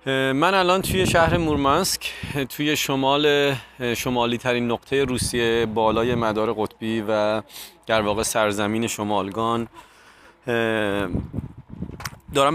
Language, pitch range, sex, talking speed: Persian, 110-130 Hz, male, 95 wpm